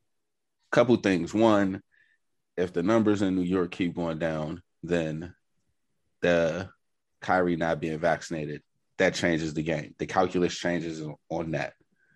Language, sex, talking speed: English, male, 135 wpm